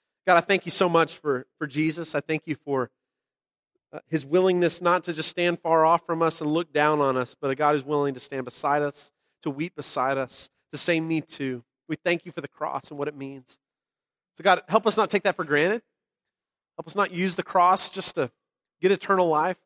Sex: male